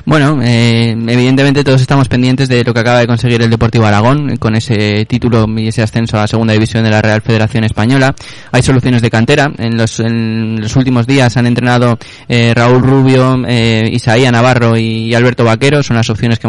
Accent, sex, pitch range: Spanish, male, 115-125 Hz